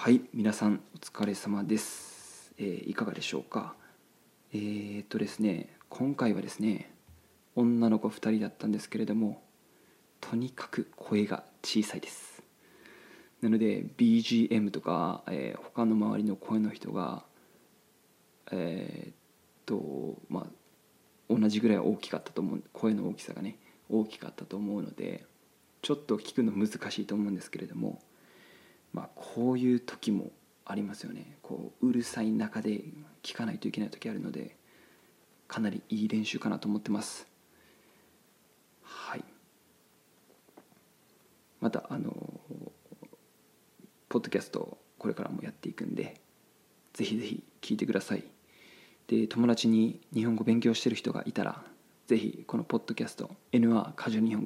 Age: 20-39